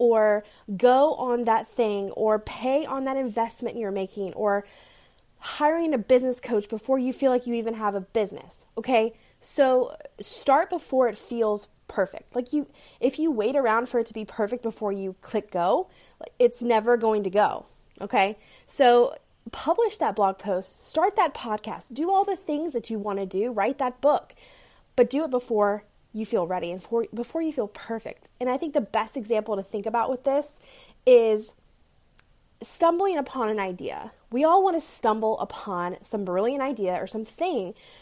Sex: female